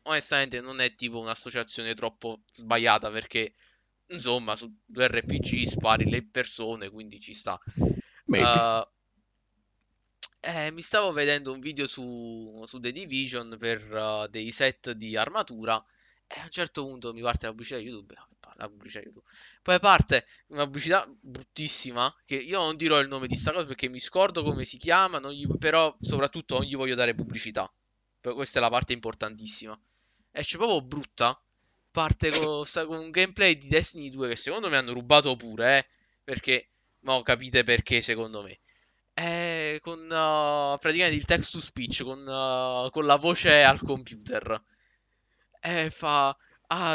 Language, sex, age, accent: Italian, male, 20-39, native